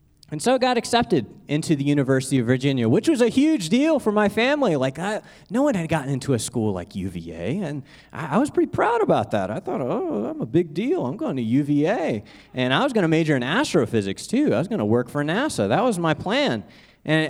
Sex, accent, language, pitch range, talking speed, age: male, American, English, 110-155 Hz, 240 wpm, 30-49